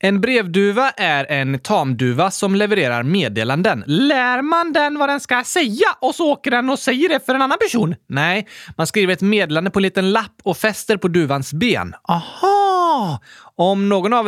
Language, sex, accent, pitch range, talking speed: Swedish, male, native, 135-220 Hz, 185 wpm